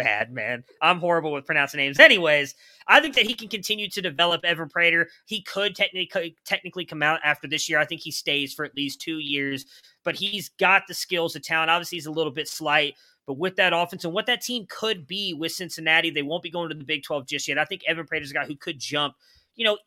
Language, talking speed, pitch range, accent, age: English, 250 wpm, 140-170 Hz, American, 20-39